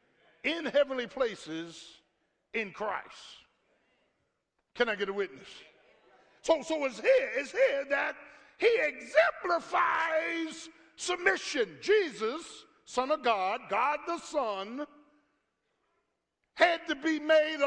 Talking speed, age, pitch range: 100 wpm, 50-69, 215-320 Hz